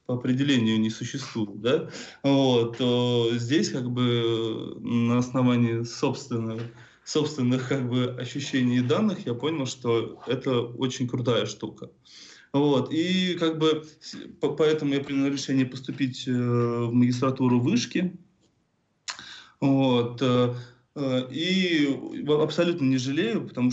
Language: Russian